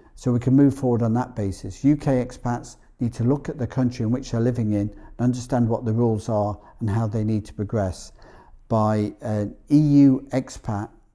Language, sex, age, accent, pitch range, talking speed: English, male, 50-69, British, 110-130 Hz, 200 wpm